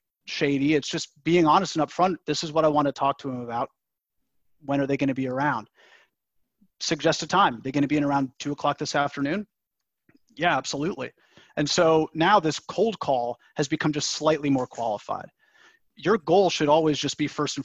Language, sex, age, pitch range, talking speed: English, male, 30-49, 130-160 Hz, 200 wpm